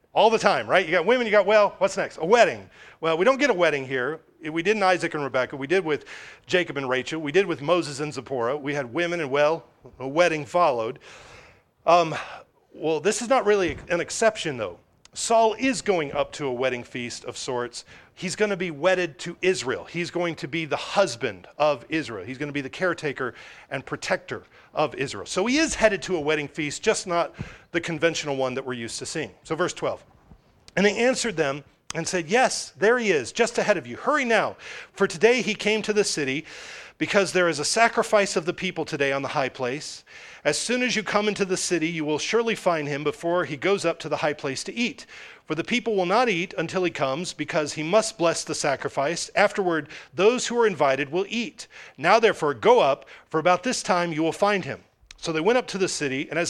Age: 40-59